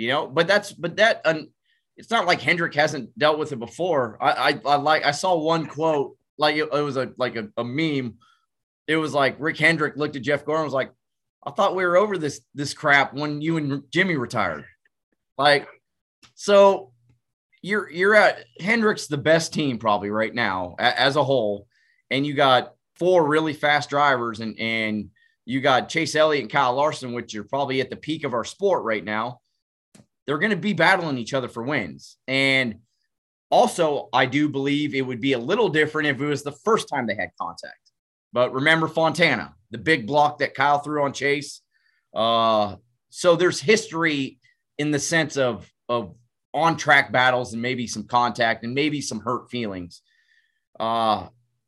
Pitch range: 120-160 Hz